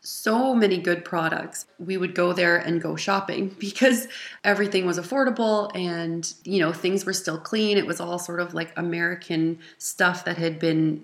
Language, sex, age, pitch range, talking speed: English, female, 20-39, 170-200 Hz, 180 wpm